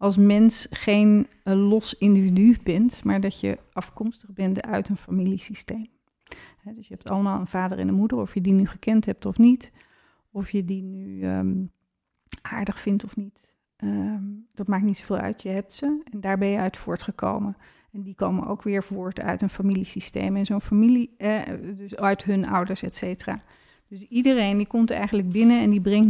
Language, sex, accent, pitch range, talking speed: Dutch, female, Dutch, 190-215 Hz, 185 wpm